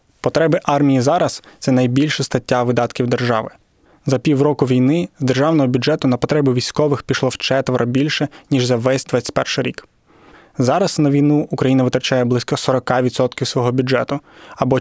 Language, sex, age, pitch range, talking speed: Ukrainian, male, 20-39, 125-145 Hz, 150 wpm